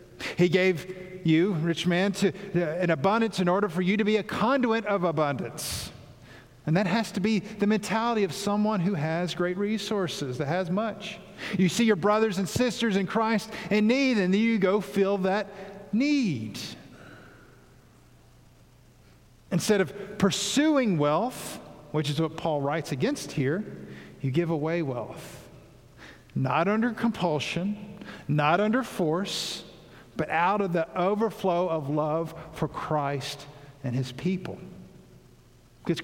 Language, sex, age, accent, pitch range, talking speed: English, male, 50-69, American, 150-210 Hz, 145 wpm